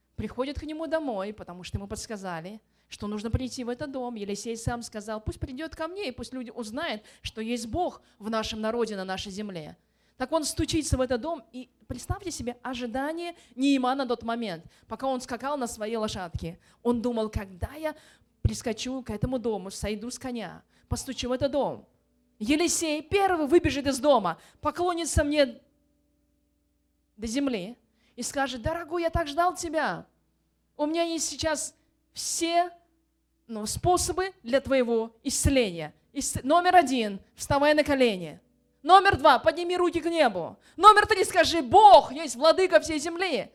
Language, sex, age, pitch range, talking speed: Russian, female, 20-39, 220-325 Hz, 155 wpm